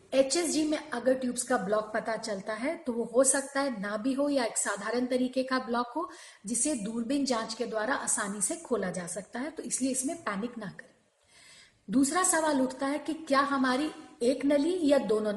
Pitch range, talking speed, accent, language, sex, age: 230-285 Hz, 205 wpm, native, Hindi, female, 40-59